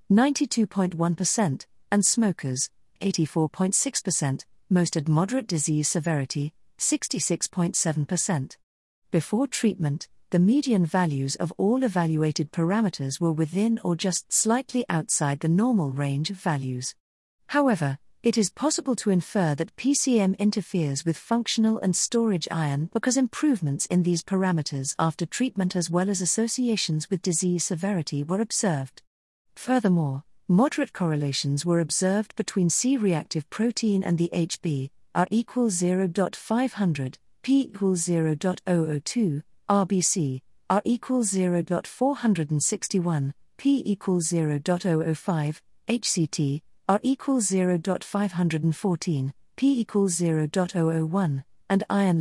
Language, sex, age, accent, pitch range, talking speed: English, female, 50-69, British, 160-215 Hz, 105 wpm